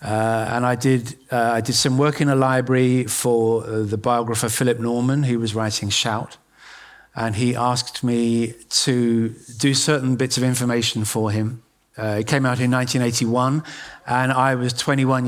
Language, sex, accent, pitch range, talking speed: Dutch, male, British, 115-130 Hz, 175 wpm